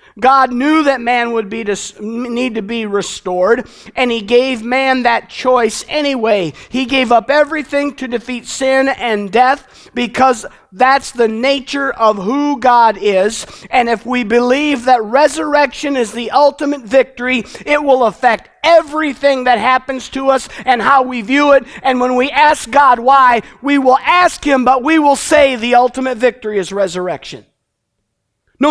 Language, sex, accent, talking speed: English, male, American, 160 wpm